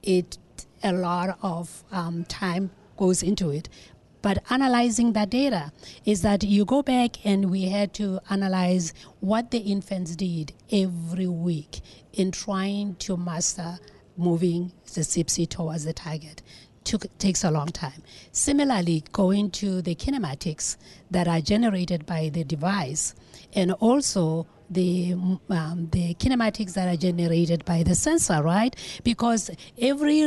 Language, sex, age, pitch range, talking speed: English, female, 30-49, 170-210 Hz, 135 wpm